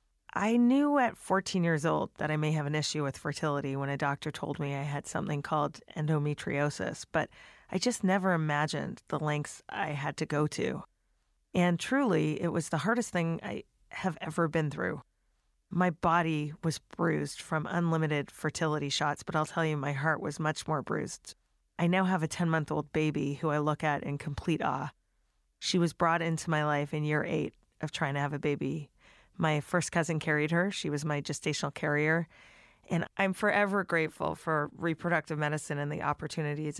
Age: 30-49